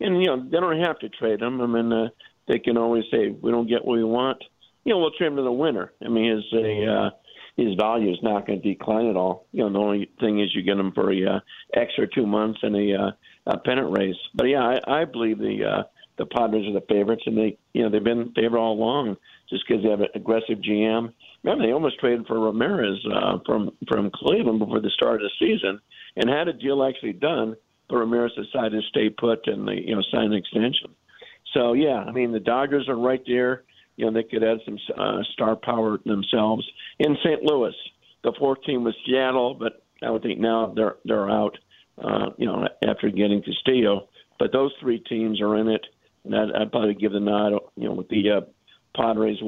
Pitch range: 105-120 Hz